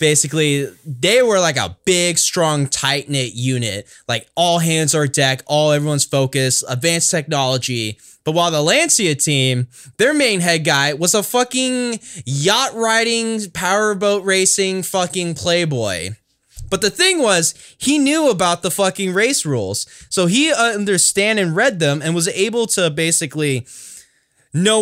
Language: English